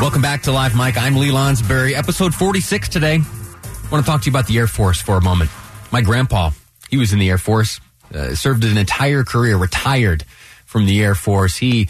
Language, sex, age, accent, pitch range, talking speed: English, male, 30-49, American, 95-120 Hz, 215 wpm